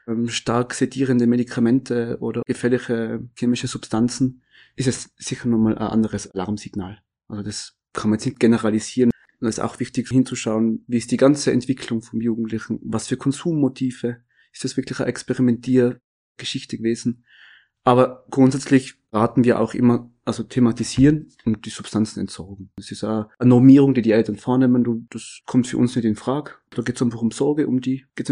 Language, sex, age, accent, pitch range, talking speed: German, male, 30-49, German, 115-130 Hz, 170 wpm